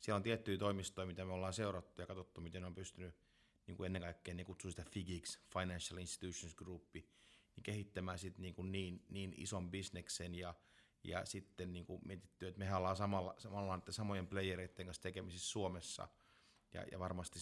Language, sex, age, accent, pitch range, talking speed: Finnish, male, 30-49, native, 90-95 Hz, 180 wpm